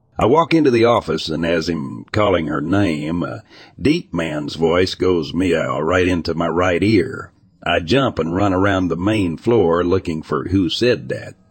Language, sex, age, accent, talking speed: English, male, 60-79, American, 180 wpm